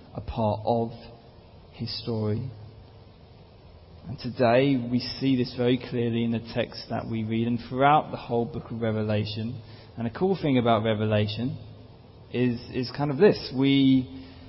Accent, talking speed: British, 155 wpm